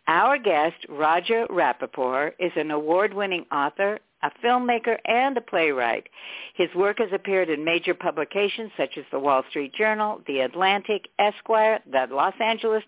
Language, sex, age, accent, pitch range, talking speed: English, female, 60-79, American, 155-210 Hz, 150 wpm